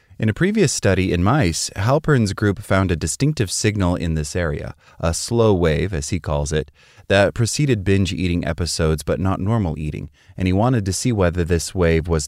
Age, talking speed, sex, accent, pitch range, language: 30-49, 190 wpm, male, American, 80-105 Hz, English